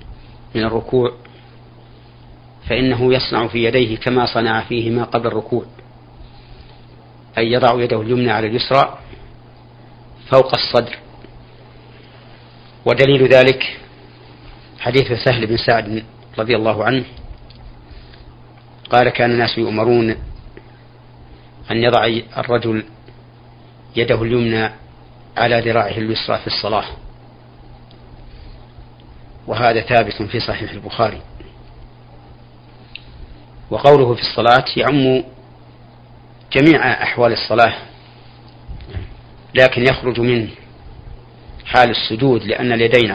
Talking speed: 85 wpm